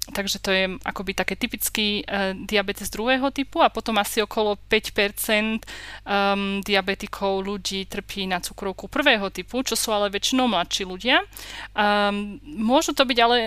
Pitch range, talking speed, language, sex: 200-230 Hz, 150 wpm, Czech, female